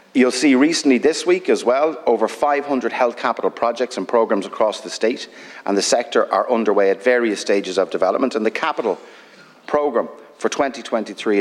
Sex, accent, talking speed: male, Irish, 175 wpm